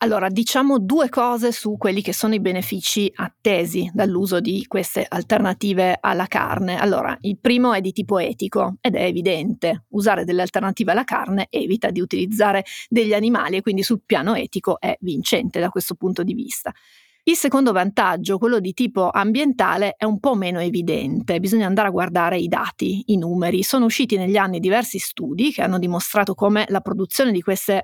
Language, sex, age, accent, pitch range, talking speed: Italian, female, 30-49, native, 190-230 Hz, 180 wpm